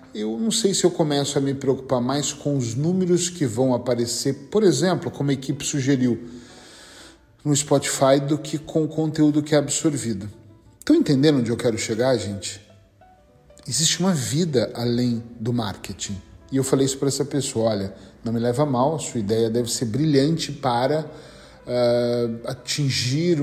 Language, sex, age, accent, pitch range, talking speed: Portuguese, male, 40-59, Brazilian, 120-160 Hz, 165 wpm